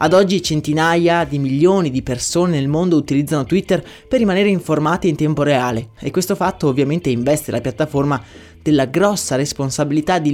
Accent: native